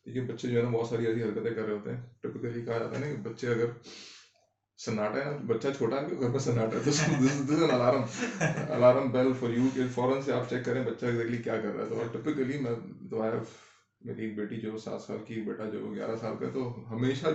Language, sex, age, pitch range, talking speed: Urdu, male, 20-39, 110-135 Hz, 60 wpm